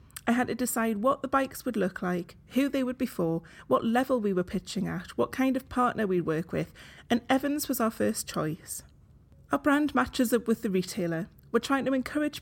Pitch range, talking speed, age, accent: 185-250 Hz, 220 wpm, 30-49, British